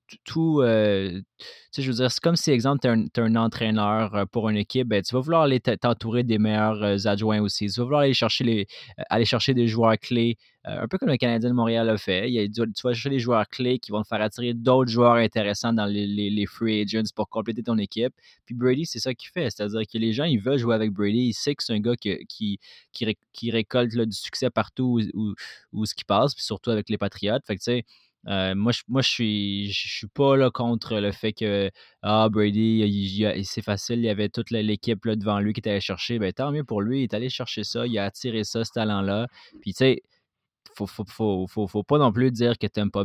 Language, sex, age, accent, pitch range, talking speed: French, male, 20-39, Canadian, 105-120 Hz, 260 wpm